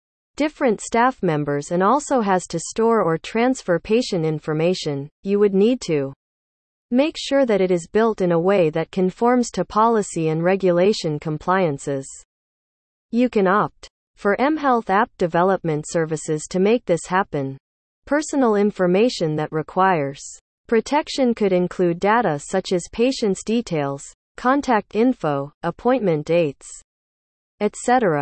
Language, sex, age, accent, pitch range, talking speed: English, female, 40-59, American, 160-225 Hz, 130 wpm